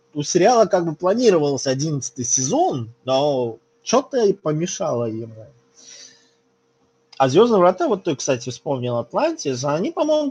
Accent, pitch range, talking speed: native, 130-180 Hz, 130 wpm